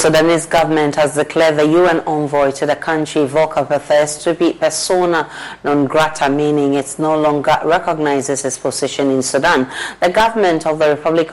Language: English